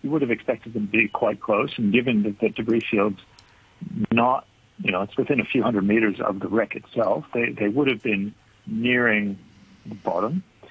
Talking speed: 200 wpm